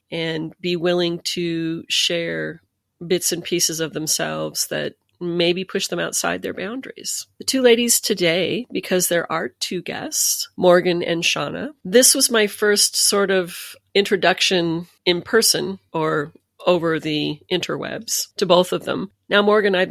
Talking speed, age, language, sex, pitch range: 150 wpm, 40-59, English, female, 160-185 Hz